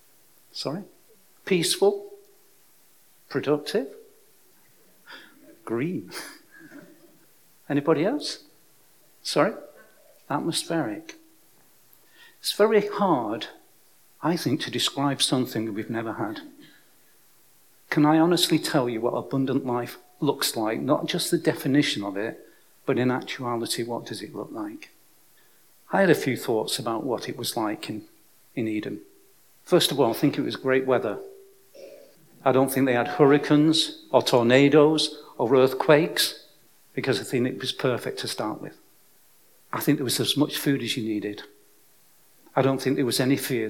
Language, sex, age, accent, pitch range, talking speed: English, male, 50-69, British, 125-170 Hz, 140 wpm